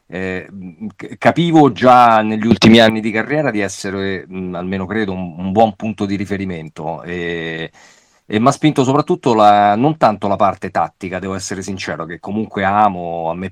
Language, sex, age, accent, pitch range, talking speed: Italian, male, 40-59, native, 90-105 Hz, 175 wpm